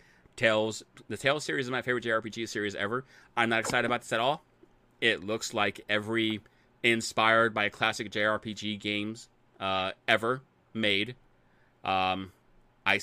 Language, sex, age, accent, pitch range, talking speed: English, male, 30-49, American, 90-110 Hz, 145 wpm